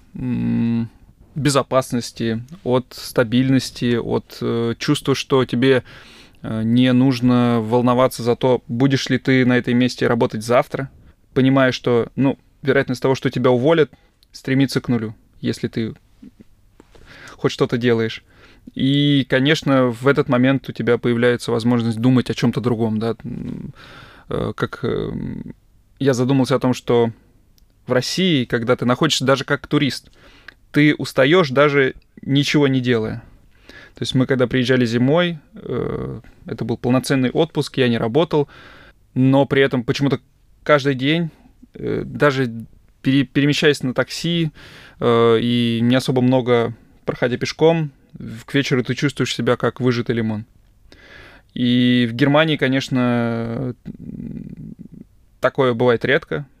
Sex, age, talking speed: male, 20-39, 125 wpm